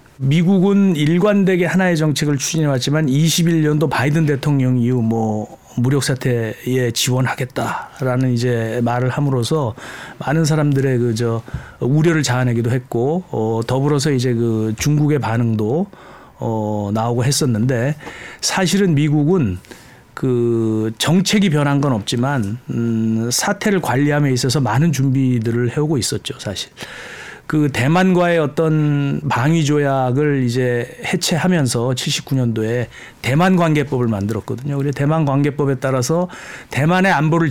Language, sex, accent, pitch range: Korean, male, native, 125-155 Hz